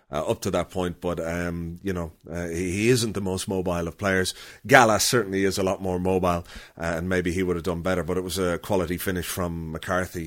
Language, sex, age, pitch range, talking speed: English, male, 40-59, 90-135 Hz, 240 wpm